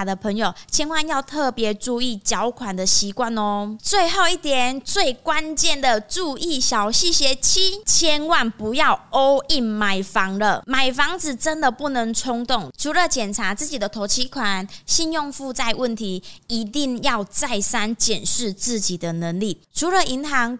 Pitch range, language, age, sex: 210-275 Hz, Chinese, 20-39, female